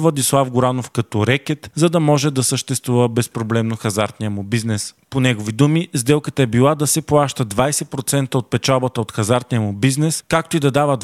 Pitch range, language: 120-145 Hz, Bulgarian